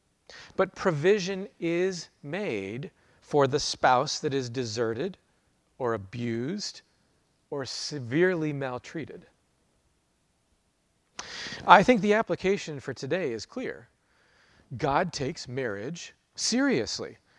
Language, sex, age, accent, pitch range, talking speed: English, male, 40-59, American, 125-175 Hz, 95 wpm